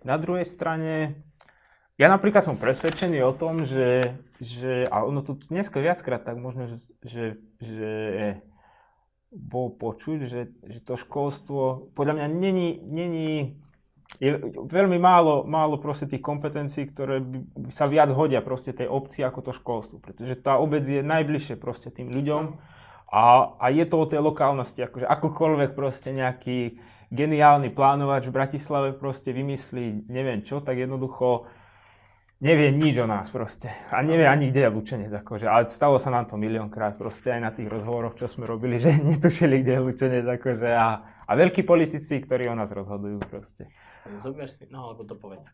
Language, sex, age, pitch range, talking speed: Slovak, male, 20-39, 120-150 Hz, 155 wpm